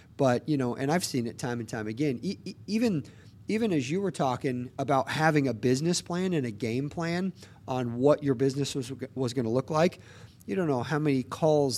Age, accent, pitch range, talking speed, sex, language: 40-59, American, 115-145 Hz, 220 wpm, male, English